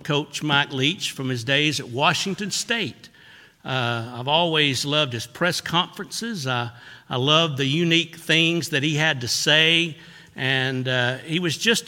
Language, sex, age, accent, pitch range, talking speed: English, male, 60-79, American, 130-175 Hz, 160 wpm